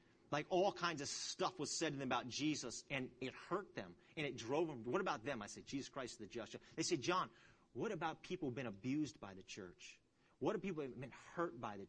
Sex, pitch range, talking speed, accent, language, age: male, 115-165 Hz, 245 wpm, American, English, 40-59